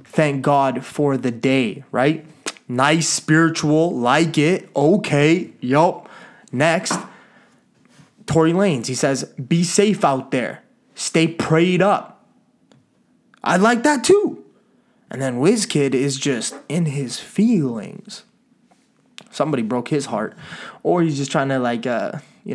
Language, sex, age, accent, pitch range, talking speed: English, male, 20-39, American, 130-165 Hz, 130 wpm